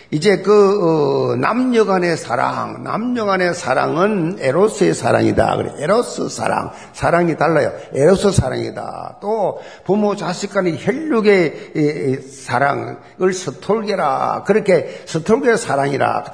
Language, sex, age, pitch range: Korean, male, 50-69, 145-215 Hz